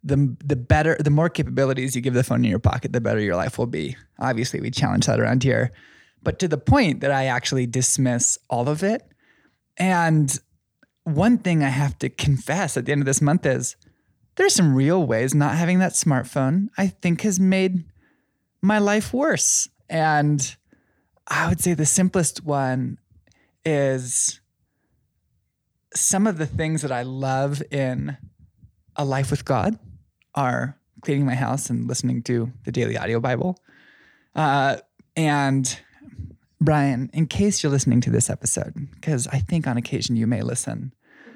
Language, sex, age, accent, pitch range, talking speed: English, male, 20-39, American, 125-160 Hz, 165 wpm